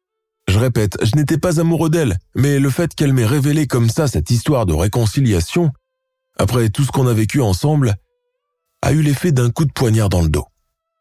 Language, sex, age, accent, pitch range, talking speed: French, male, 20-39, French, 100-160 Hz, 195 wpm